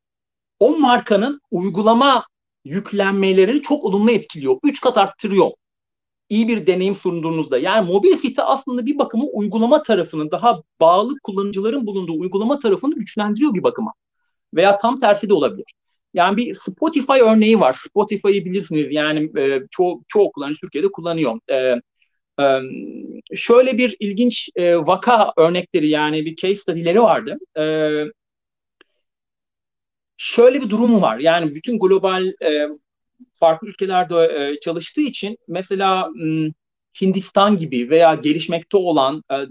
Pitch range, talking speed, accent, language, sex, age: 165-245 Hz, 120 wpm, native, Turkish, male, 40-59